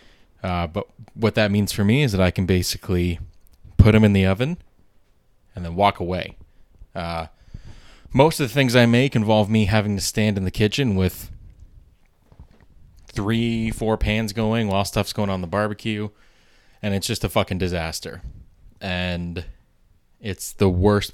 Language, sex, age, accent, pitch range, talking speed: English, male, 20-39, American, 85-110 Hz, 160 wpm